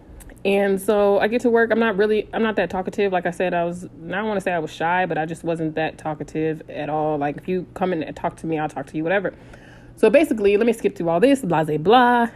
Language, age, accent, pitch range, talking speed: English, 20-39, American, 160-200 Hz, 285 wpm